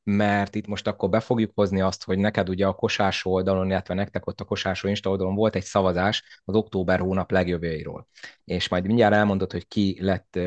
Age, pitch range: 30-49, 95-105 Hz